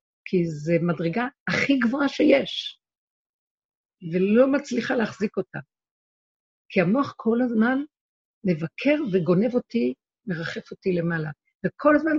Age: 50-69